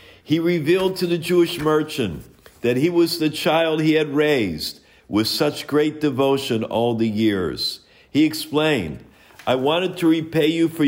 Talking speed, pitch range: 160 wpm, 125-155 Hz